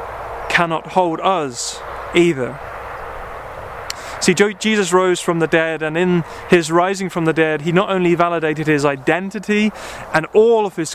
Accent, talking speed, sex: British, 150 wpm, male